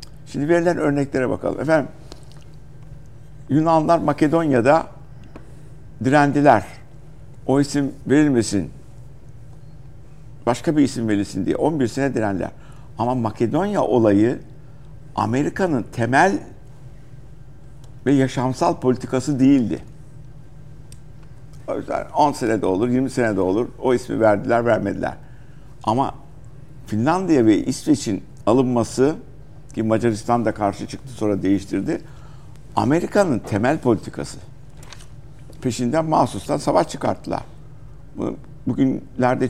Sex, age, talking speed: male, 60-79, 95 wpm